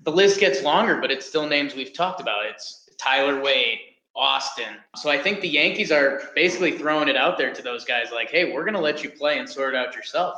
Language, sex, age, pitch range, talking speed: English, male, 20-39, 135-165 Hz, 245 wpm